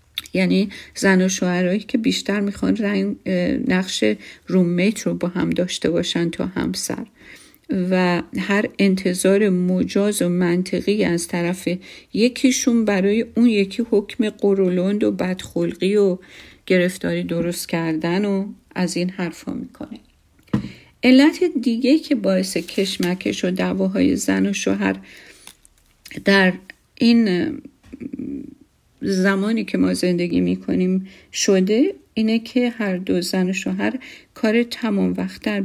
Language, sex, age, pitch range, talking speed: Persian, female, 50-69, 175-230 Hz, 120 wpm